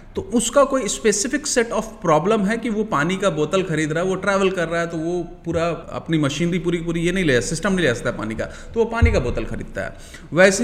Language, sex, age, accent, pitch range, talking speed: Hindi, male, 30-49, native, 155-225 Hz, 265 wpm